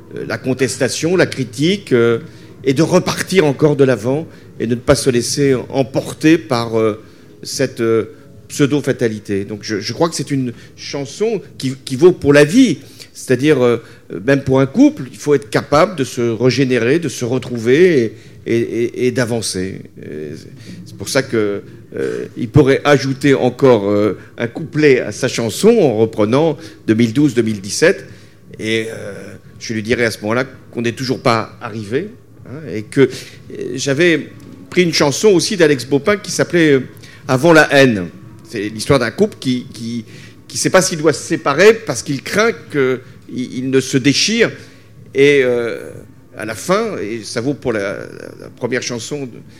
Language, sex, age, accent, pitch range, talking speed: French, male, 40-59, French, 115-145 Hz, 170 wpm